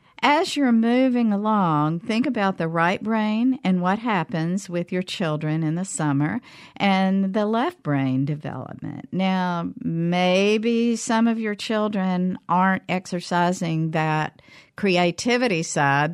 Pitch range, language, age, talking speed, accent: 150-195 Hz, English, 50-69, 125 wpm, American